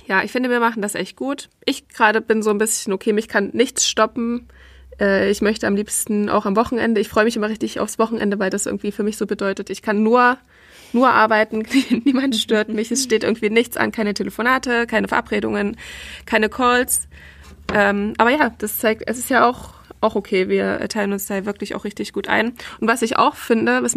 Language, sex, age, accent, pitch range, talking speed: German, female, 20-39, German, 205-240 Hz, 210 wpm